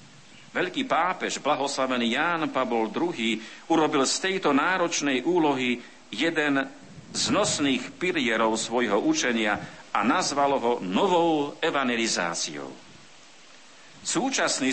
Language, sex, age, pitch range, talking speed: Slovak, male, 50-69, 115-155 Hz, 95 wpm